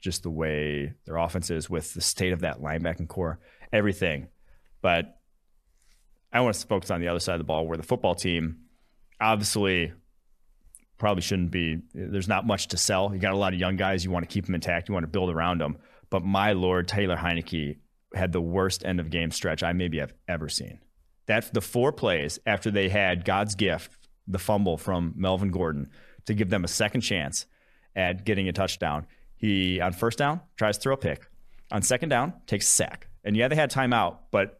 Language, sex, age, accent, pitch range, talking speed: English, male, 30-49, American, 85-115 Hz, 210 wpm